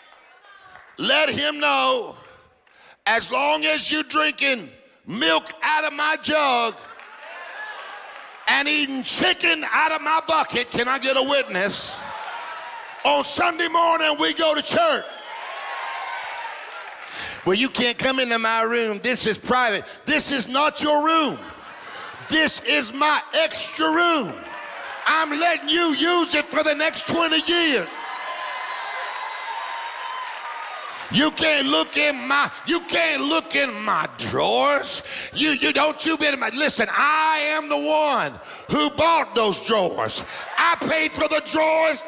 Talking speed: 135 wpm